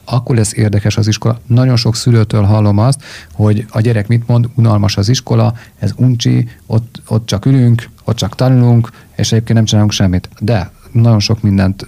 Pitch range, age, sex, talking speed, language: 105-120 Hz, 40-59, male, 180 wpm, Hungarian